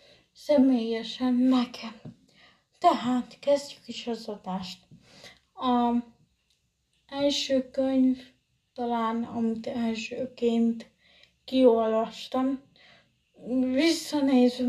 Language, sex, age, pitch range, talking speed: Hungarian, female, 20-39, 225-255 Hz, 60 wpm